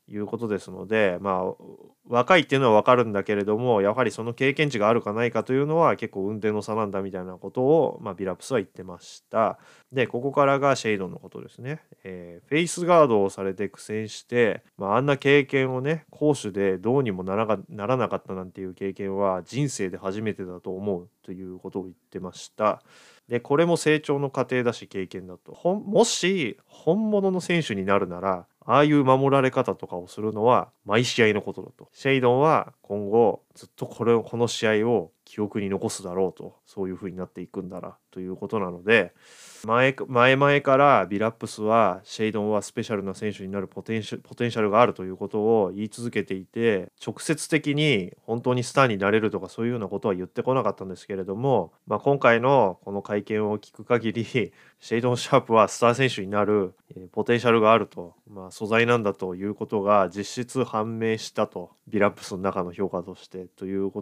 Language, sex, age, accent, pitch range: Japanese, male, 20-39, native, 95-130 Hz